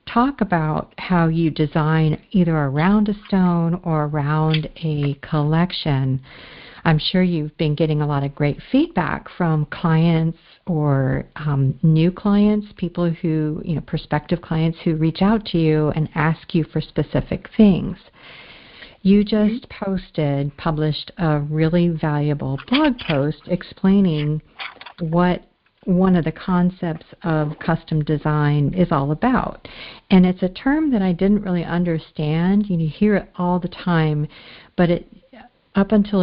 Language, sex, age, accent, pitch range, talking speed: English, female, 50-69, American, 155-190 Hz, 140 wpm